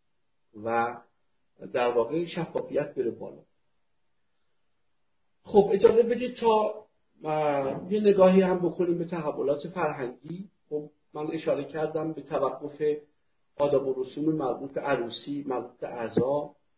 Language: Persian